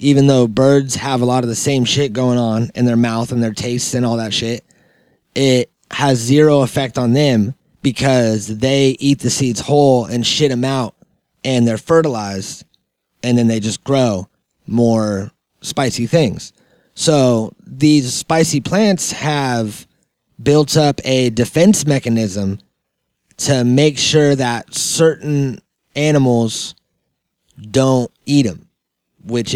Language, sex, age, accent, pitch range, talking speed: English, male, 30-49, American, 120-145 Hz, 140 wpm